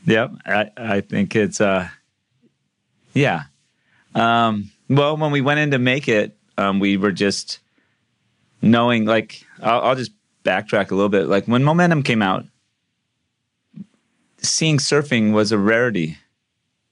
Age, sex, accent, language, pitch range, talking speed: 30-49, male, American, English, 95-115 Hz, 140 wpm